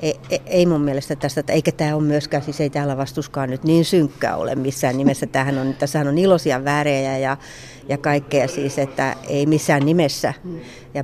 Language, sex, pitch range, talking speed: Finnish, female, 135-150 Hz, 180 wpm